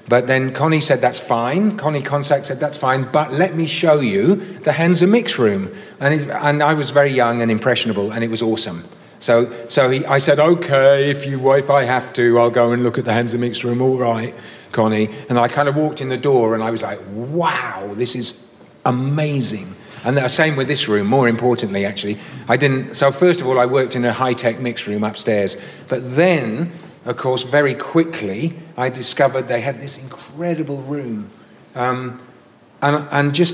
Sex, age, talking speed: male, 40-59, 195 wpm